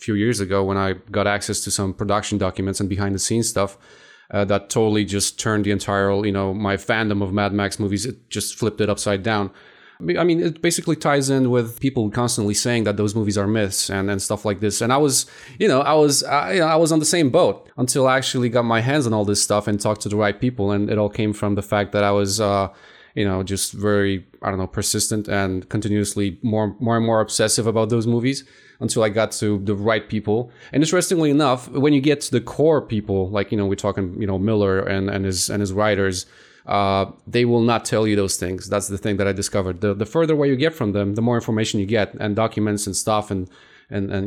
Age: 20-39